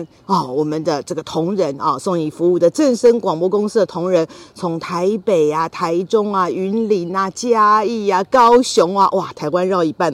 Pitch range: 175-230 Hz